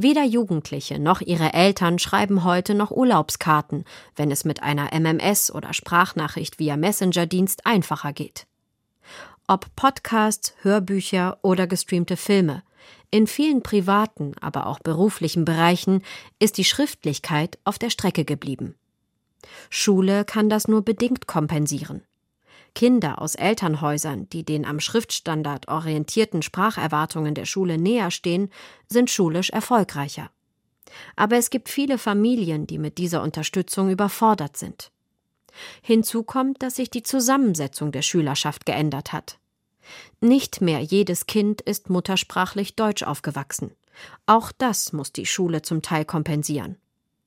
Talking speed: 125 wpm